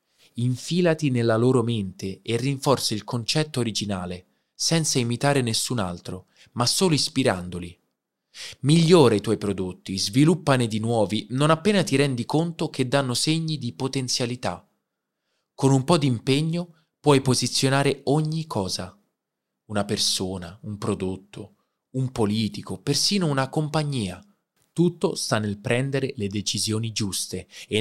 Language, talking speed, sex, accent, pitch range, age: Italian, 125 wpm, male, native, 105-145 Hz, 20-39